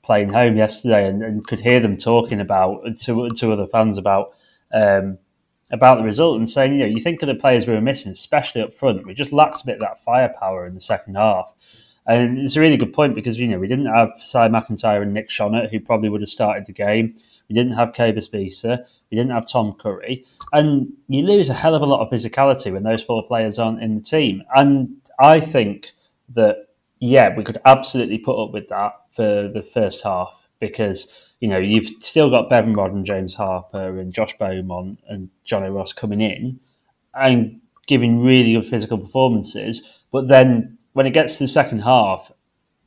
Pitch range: 105-130 Hz